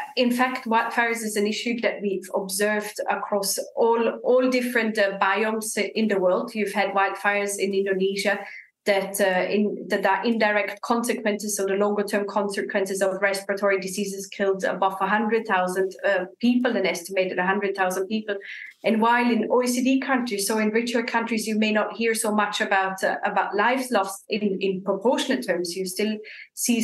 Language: English